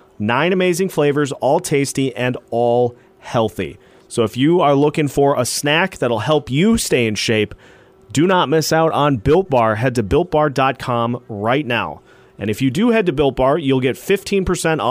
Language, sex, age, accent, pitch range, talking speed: English, male, 30-49, American, 120-160 Hz, 185 wpm